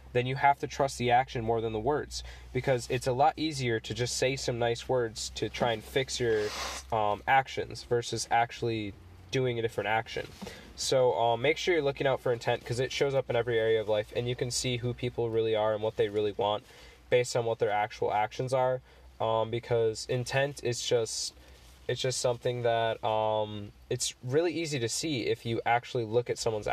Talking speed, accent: 210 wpm, American